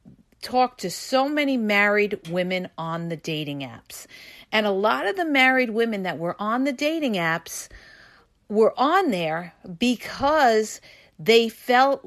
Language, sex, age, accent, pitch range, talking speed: English, female, 40-59, American, 185-255 Hz, 145 wpm